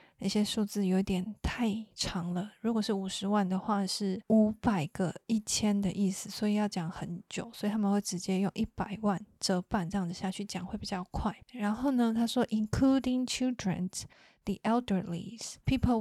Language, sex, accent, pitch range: Chinese, female, native, 190-215 Hz